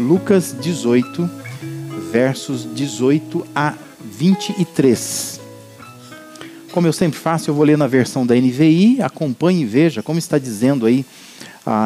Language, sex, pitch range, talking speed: Portuguese, male, 130-185 Hz, 125 wpm